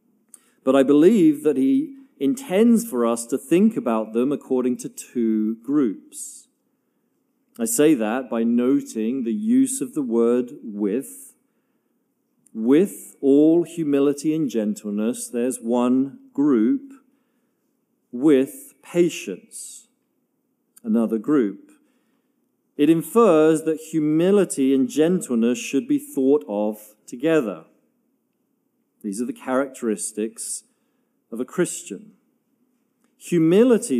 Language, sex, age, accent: English, male, 40-59, British